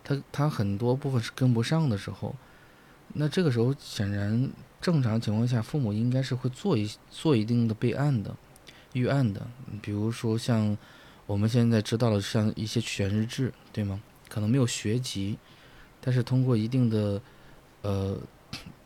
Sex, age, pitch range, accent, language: male, 20-39, 105-125 Hz, native, Chinese